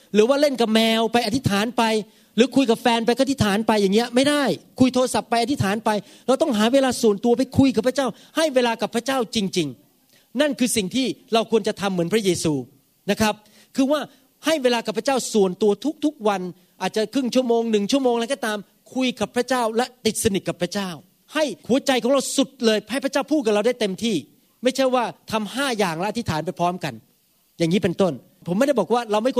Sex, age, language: male, 30-49, Thai